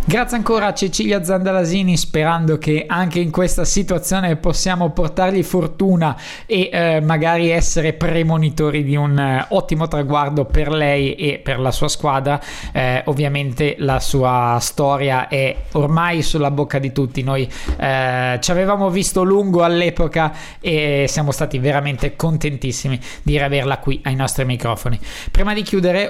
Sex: male